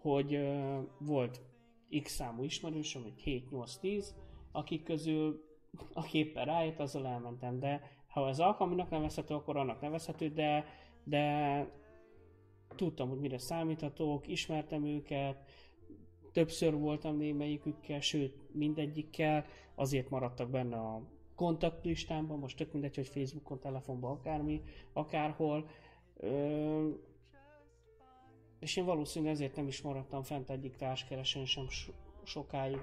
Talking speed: 115 wpm